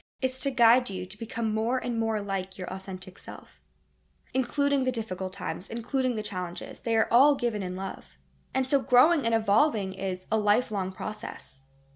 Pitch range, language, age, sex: 190-245 Hz, English, 10-29, female